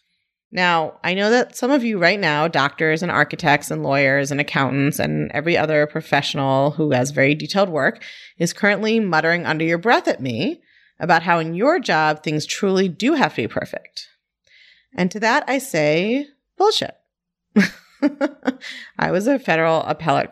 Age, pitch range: 30-49, 150-210 Hz